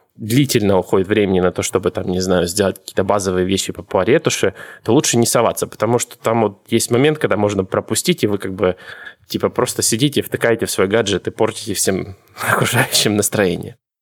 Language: Russian